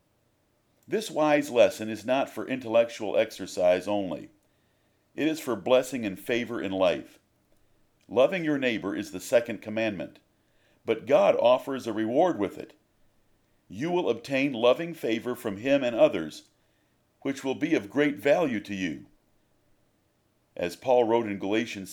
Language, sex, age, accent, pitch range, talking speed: English, male, 50-69, American, 105-145 Hz, 145 wpm